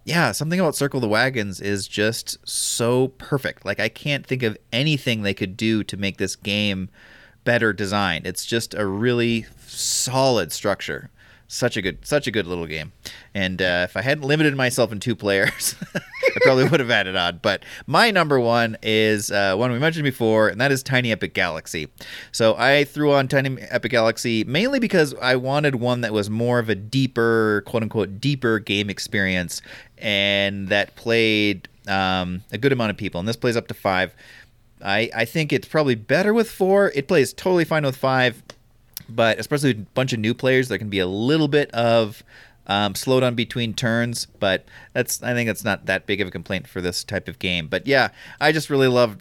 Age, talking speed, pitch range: 30-49, 200 wpm, 100-130 Hz